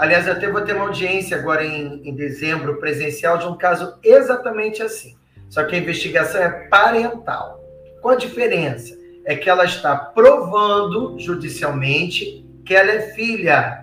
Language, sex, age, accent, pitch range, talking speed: Portuguese, male, 40-59, Brazilian, 160-230 Hz, 155 wpm